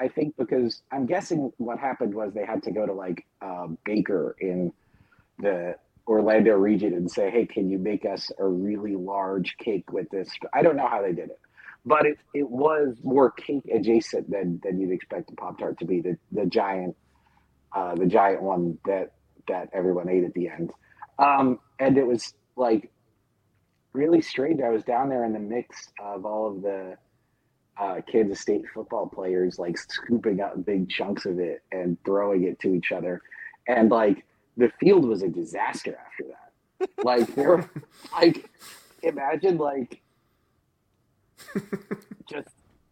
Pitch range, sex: 95-145 Hz, male